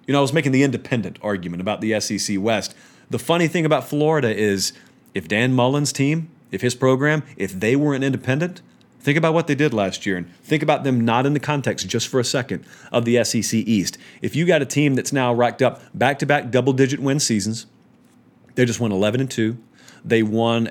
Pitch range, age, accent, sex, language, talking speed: 115-145 Hz, 40-59, American, male, English, 210 wpm